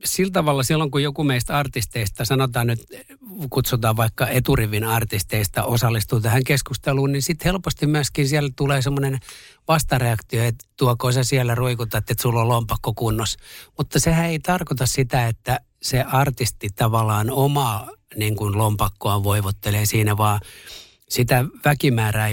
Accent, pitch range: native, 115-145 Hz